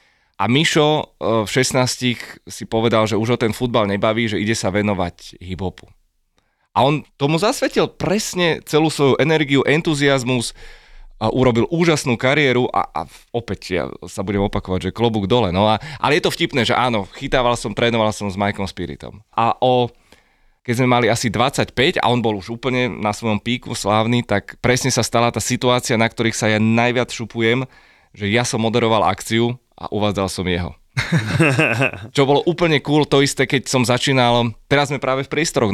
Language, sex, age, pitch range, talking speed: Slovak, male, 20-39, 105-125 Hz, 180 wpm